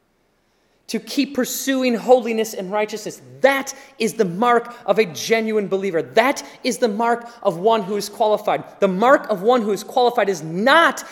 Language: English